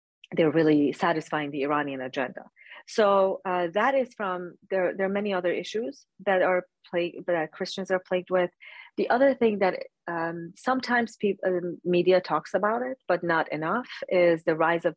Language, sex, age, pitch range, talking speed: English, female, 40-59, 155-185 Hz, 170 wpm